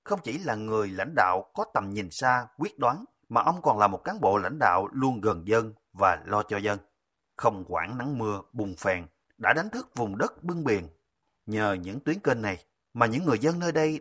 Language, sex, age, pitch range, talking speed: Vietnamese, male, 30-49, 105-145 Hz, 225 wpm